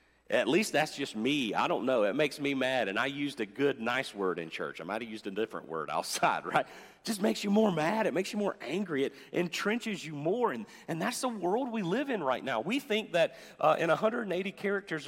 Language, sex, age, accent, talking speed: English, male, 40-59, American, 245 wpm